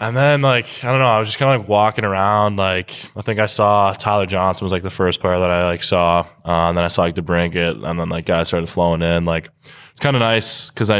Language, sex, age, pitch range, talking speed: English, male, 10-29, 85-100 Hz, 280 wpm